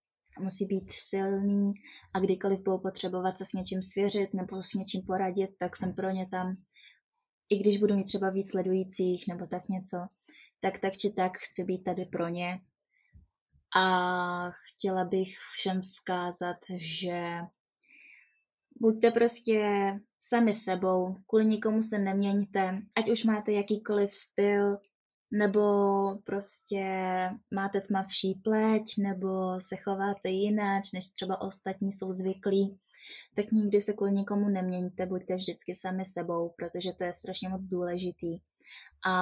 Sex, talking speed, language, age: female, 135 wpm, Czech, 20-39